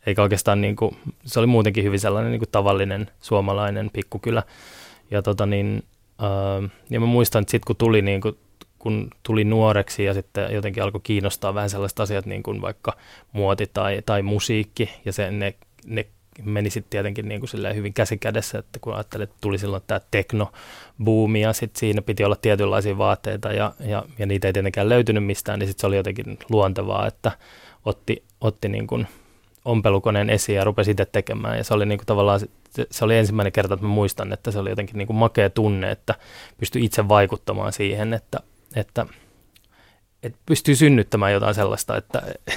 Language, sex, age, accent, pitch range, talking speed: Finnish, male, 20-39, native, 100-110 Hz, 180 wpm